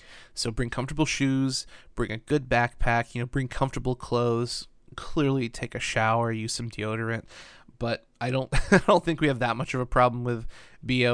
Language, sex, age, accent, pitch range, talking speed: English, male, 20-39, American, 115-135 Hz, 190 wpm